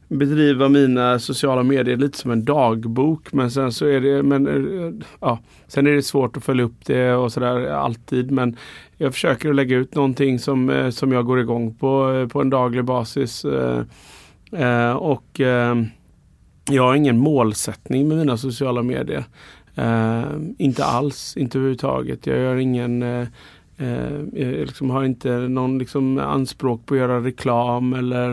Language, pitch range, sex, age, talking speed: English, 125-140 Hz, male, 30-49, 150 wpm